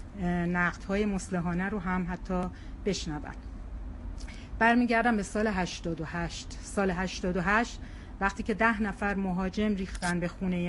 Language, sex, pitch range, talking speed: Persian, female, 170-215 Hz, 125 wpm